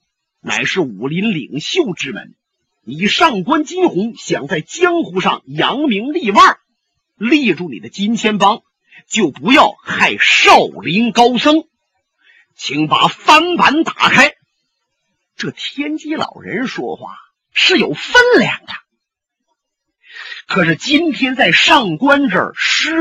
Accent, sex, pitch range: native, male, 205-330 Hz